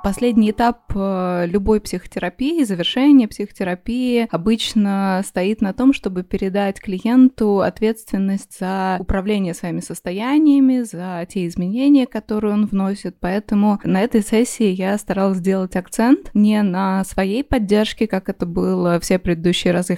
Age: 20-39